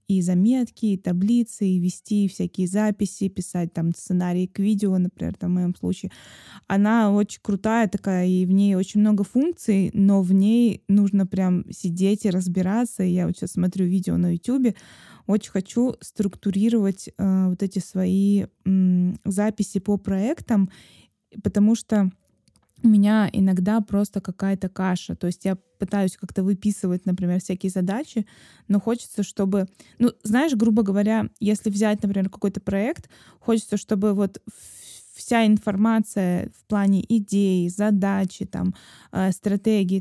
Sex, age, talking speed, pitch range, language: female, 20-39, 140 wpm, 190-215 Hz, Russian